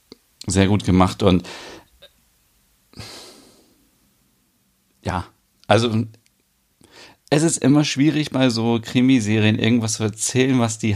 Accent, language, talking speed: German, German, 100 wpm